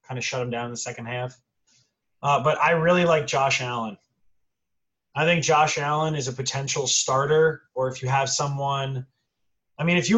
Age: 20-39